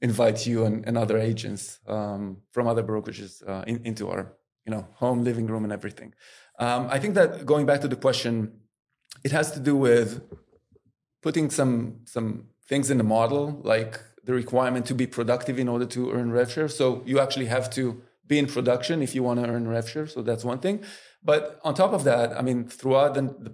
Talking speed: 205 wpm